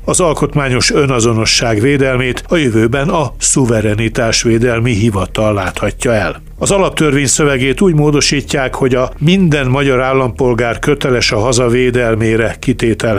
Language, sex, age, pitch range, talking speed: Hungarian, male, 60-79, 115-140 Hz, 120 wpm